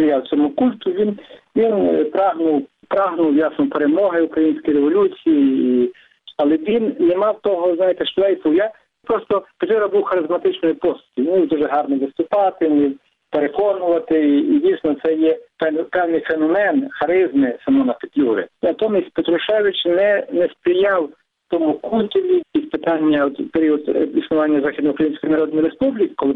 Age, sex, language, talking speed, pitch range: 50-69, male, Ukrainian, 125 wpm, 150-225 Hz